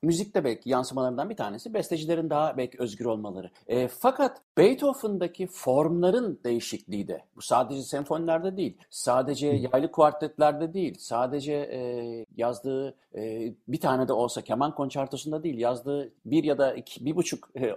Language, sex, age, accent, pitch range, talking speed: Turkish, male, 50-69, native, 120-180 Hz, 145 wpm